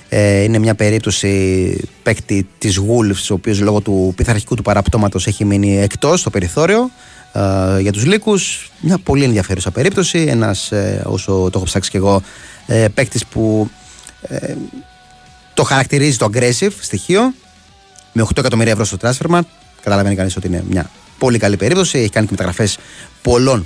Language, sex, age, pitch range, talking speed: Greek, male, 30-49, 95-125 Hz, 155 wpm